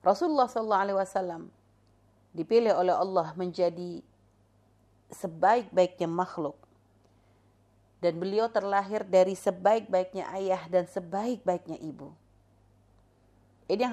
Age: 30-49